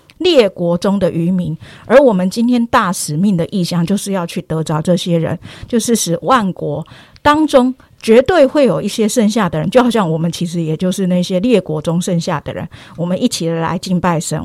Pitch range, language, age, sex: 175-225 Hz, Chinese, 50-69, female